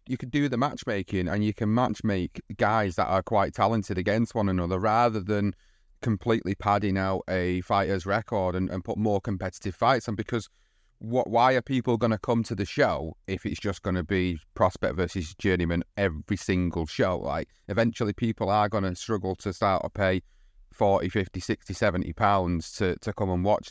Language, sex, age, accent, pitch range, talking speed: English, male, 30-49, British, 90-105 Hz, 190 wpm